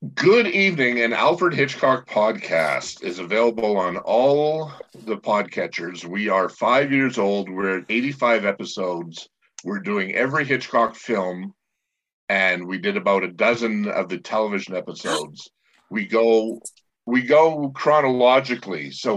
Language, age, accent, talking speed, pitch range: English, 50-69, American, 130 wpm, 95-130 Hz